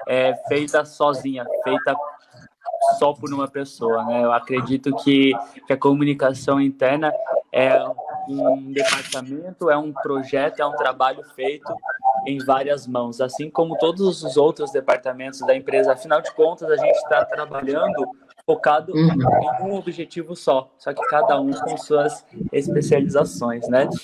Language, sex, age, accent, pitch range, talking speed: Portuguese, male, 20-39, Brazilian, 135-165 Hz, 140 wpm